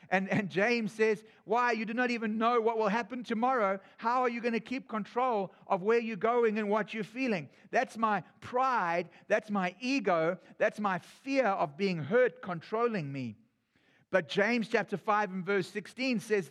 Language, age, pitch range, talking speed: English, 50-69, 185-235 Hz, 185 wpm